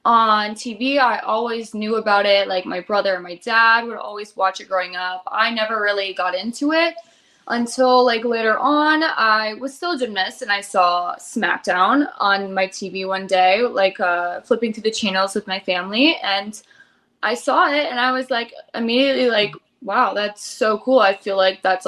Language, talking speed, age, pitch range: English, 190 wpm, 20-39, 195-265 Hz